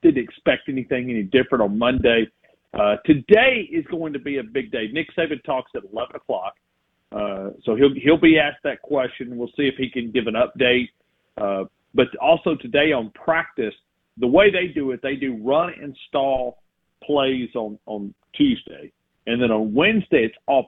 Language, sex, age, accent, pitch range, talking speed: English, male, 40-59, American, 110-145 Hz, 185 wpm